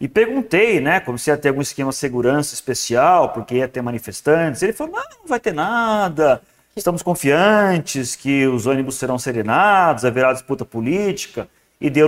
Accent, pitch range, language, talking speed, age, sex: Brazilian, 120-155 Hz, Portuguese, 175 wpm, 40-59, male